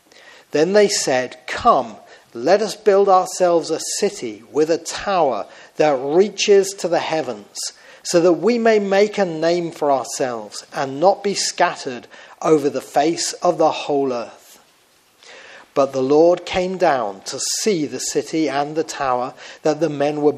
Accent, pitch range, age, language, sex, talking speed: British, 140-185 Hz, 40-59, English, male, 160 wpm